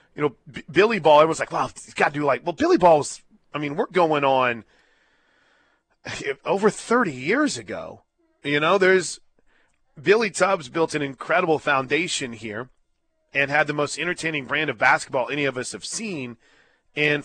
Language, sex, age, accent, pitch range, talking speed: English, male, 30-49, American, 135-175 Hz, 175 wpm